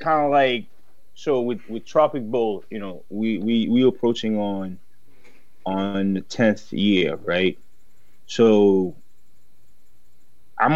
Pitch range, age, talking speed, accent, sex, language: 95-110 Hz, 20-39, 125 wpm, American, male, English